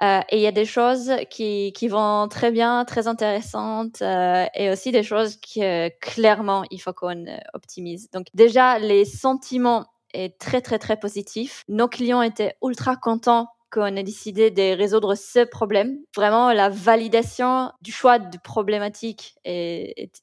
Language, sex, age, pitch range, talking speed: French, female, 20-39, 200-235 Hz, 160 wpm